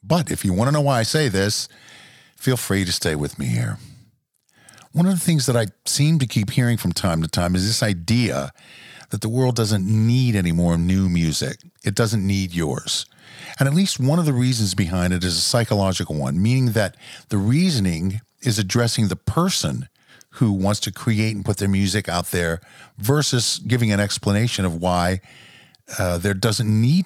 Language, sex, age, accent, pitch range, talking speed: English, male, 50-69, American, 95-125 Hz, 195 wpm